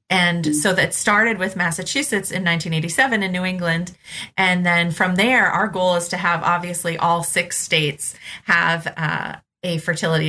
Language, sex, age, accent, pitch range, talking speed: English, female, 30-49, American, 165-190 Hz, 165 wpm